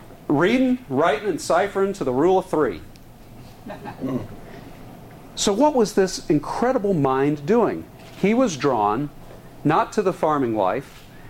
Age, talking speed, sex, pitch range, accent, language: 40-59, 125 wpm, male, 140-185 Hz, American, English